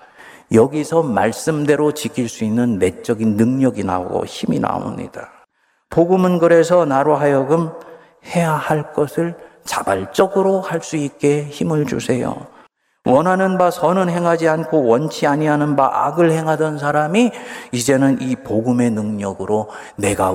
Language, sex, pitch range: Korean, male, 115-165 Hz